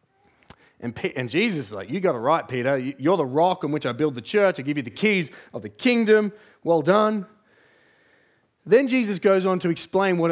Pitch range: 130-180 Hz